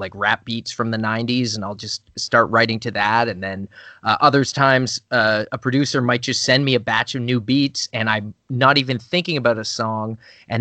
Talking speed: 220 wpm